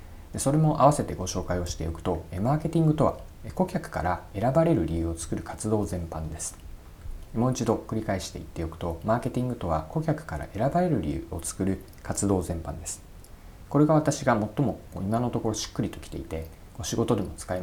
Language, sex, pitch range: Japanese, male, 85-125 Hz